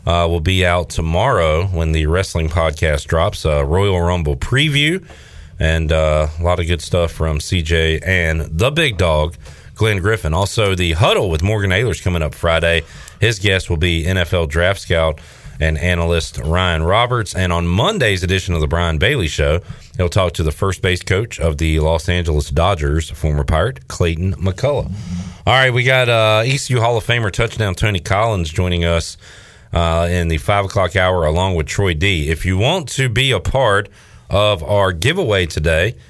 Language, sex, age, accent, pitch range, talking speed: English, male, 40-59, American, 80-110 Hz, 180 wpm